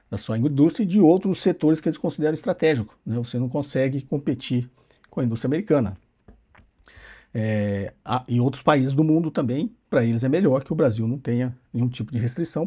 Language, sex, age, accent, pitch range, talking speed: Portuguese, male, 50-69, Brazilian, 120-155 Hz, 190 wpm